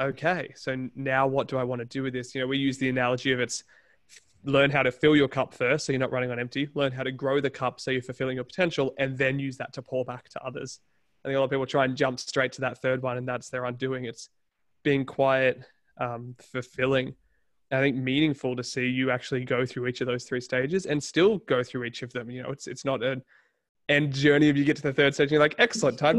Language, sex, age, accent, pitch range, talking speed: English, male, 20-39, Australian, 125-145 Hz, 265 wpm